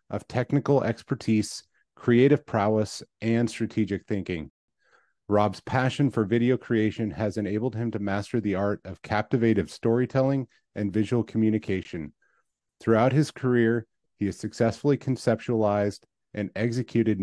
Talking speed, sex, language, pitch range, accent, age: 120 wpm, male, English, 105-120 Hz, American, 30-49